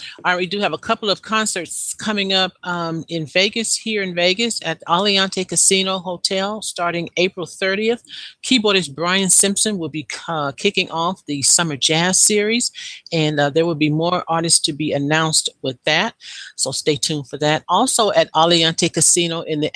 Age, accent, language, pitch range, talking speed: 50-69, American, English, 160-195 Hz, 180 wpm